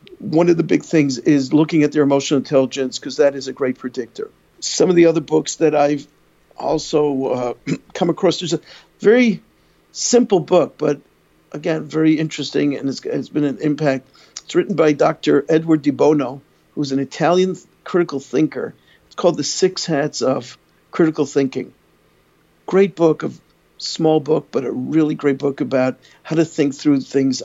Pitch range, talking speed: 140-165 Hz, 175 wpm